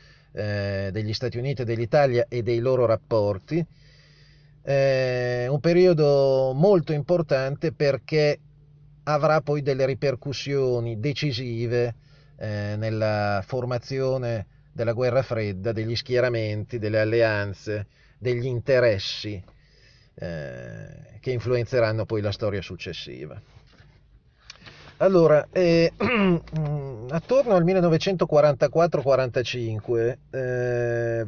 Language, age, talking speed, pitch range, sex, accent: Italian, 40-59, 80 wpm, 120-145 Hz, male, native